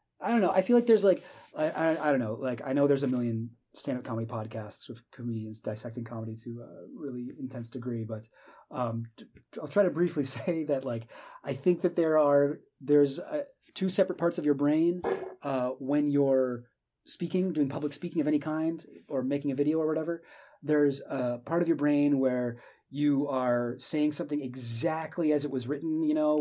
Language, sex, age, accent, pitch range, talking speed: English, male, 30-49, American, 130-160 Hz, 205 wpm